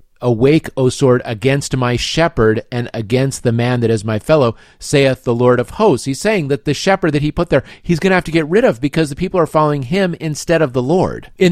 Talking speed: 245 wpm